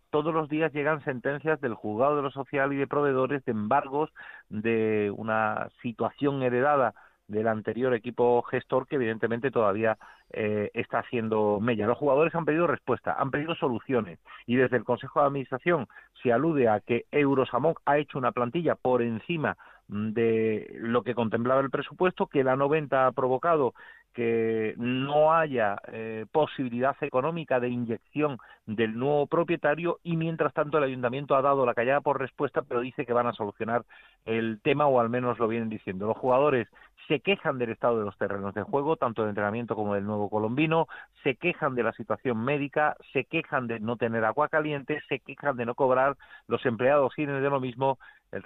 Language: Spanish